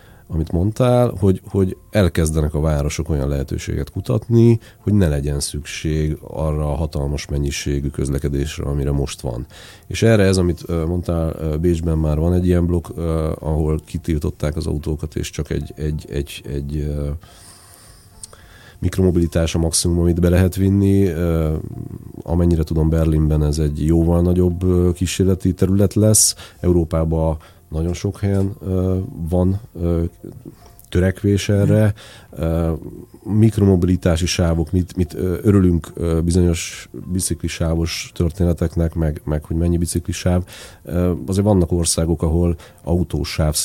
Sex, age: male, 40-59